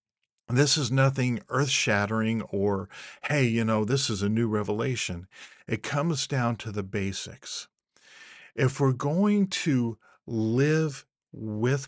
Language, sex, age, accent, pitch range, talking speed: English, male, 50-69, American, 110-135 Hz, 125 wpm